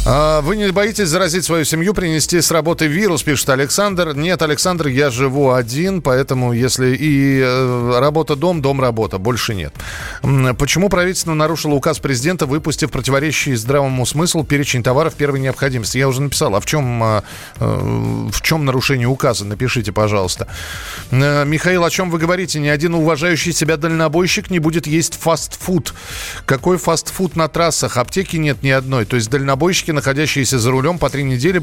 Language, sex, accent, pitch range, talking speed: Russian, male, native, 130-175 Hz, 155 wpm